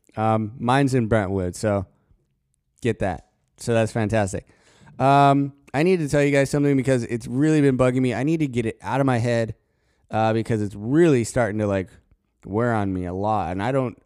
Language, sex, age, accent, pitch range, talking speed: English, male, 20-39, American, 110-140 Hz, 205 wpm